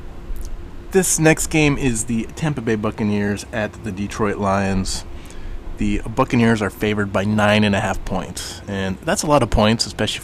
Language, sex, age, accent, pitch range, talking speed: English, male, 20-39, American, 90-110 Hz, 170 wpm